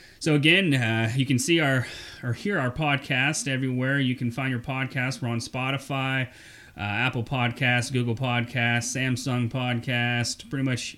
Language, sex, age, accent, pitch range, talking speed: English, male, 30-49, American, 120-135 Hz, 160 wpm